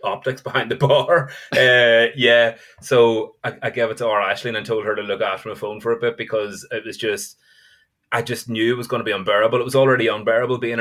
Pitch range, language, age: 110-135 Hz, English, 20-39